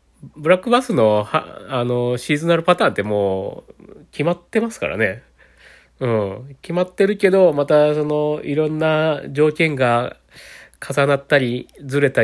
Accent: native